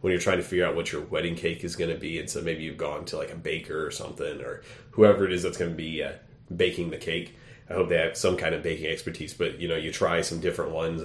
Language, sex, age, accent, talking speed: English, male, 30-49, American, 295 wpm